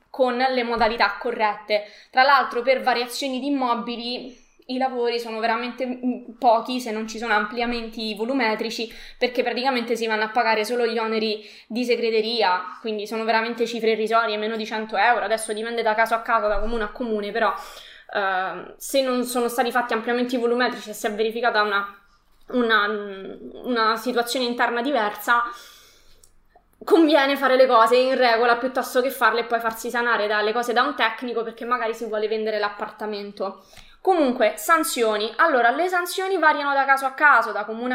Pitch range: 220-255 Hz